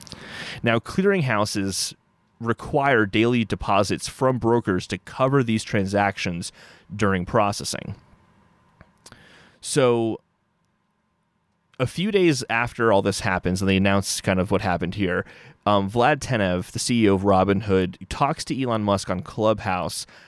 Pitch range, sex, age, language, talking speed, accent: 100-125 Hz, male, 30-49, English, 125 wpm, American